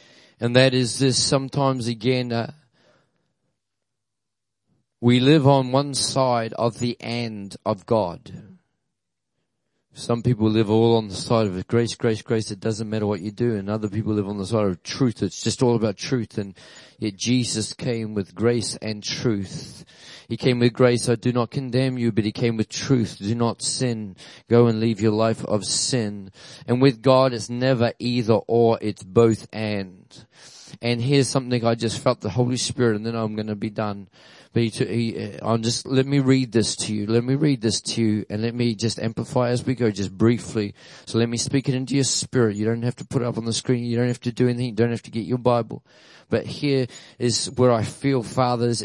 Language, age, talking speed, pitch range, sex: English, 40-59, 210 wpm, 110-125 Hz, male